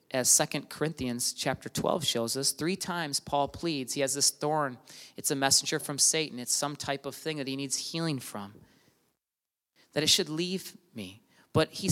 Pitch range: 135-175 Hz